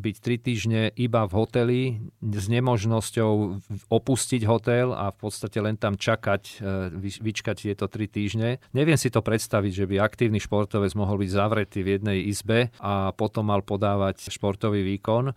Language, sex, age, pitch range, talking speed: Slovak, male, 40-59, 100-115 Hz, 155 wpm